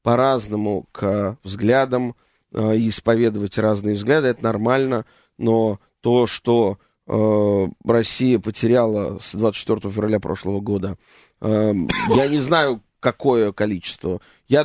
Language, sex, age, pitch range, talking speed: Russian, male, 30-49, 110-145 Hz, 110 wpm